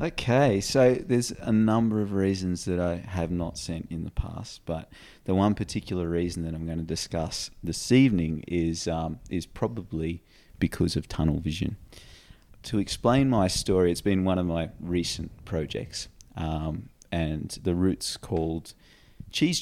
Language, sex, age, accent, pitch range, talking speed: English, male, 30-49, Australian, 85-105 Hz, 160 wpm